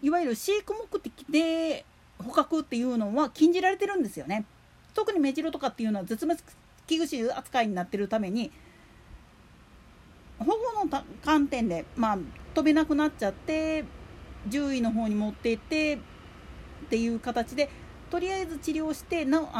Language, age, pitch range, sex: Japanese, 40-59, 225-315 Hz, female